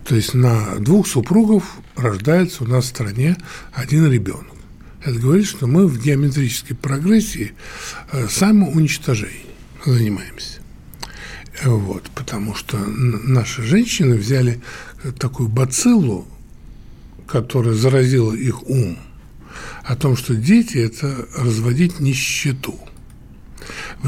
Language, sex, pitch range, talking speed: Russian, male, 115-165 Hz, 105 wpm